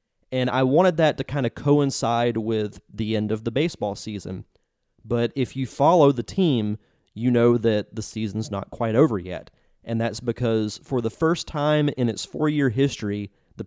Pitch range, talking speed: 105-135 Hz, 185 wpm